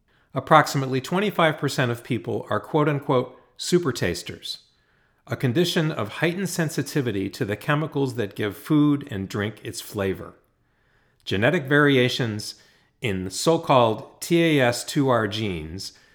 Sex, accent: male, American